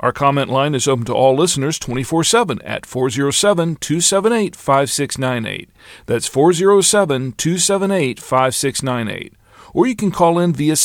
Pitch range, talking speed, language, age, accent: 125-170 Hz, 105 wpm, English, 40-59, American